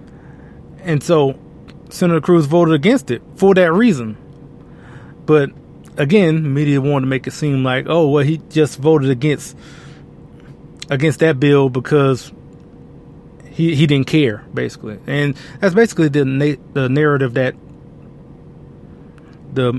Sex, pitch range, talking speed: male, 140-170 Hz, 130 wpm